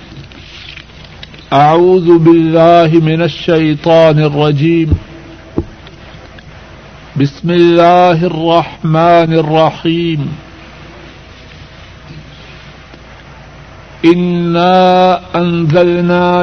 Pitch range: 160-175 Hz